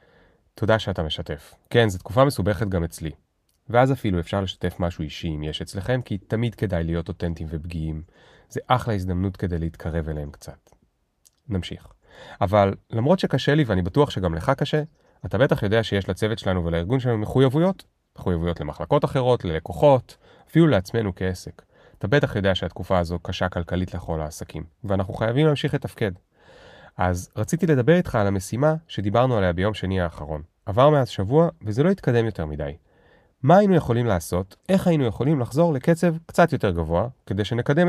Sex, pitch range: male, 90-130 Hz